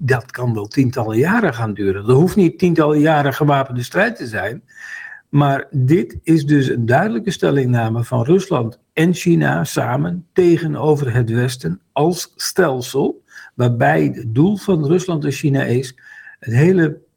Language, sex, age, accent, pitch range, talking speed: Dutch, male, 50-69, Dutch, 125-170 Hz, 150 wpm